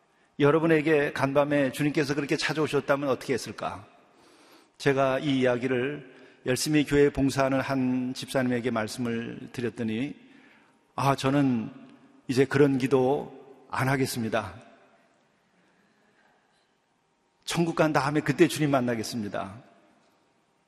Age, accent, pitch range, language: 40-59, native, 125-150 Hz, Korean